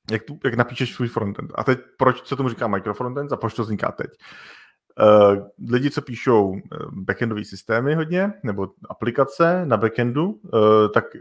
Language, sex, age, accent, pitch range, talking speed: Czech, male, 30-49, native, 105-125 Hz, 165 wpm